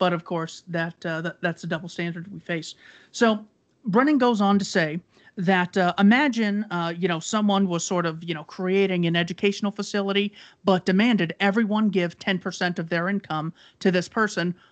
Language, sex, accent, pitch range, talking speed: English, male, American, 170-205 Hz, 190 wpm